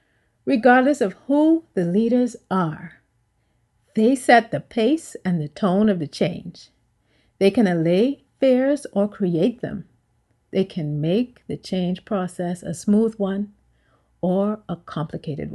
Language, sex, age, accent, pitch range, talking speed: English, female, 50-69, American, 150-245 Hz, 135 wpm